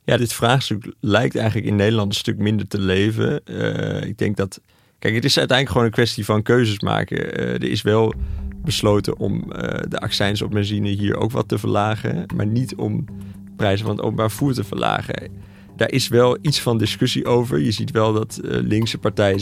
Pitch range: 95-110 Hz